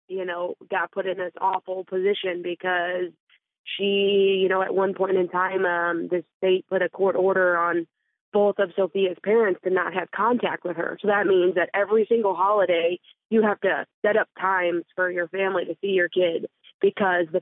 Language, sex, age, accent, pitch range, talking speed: English, female, 20-39, American, 180-195 Hz, 195 wpm